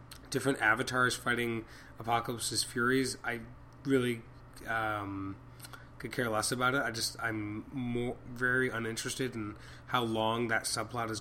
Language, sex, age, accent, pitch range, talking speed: English, male, 20-39, American, 110-130 Hz, 135 wpm